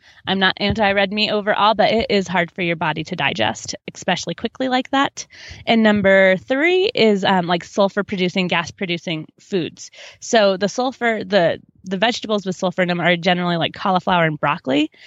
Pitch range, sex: 175-220 Hz, female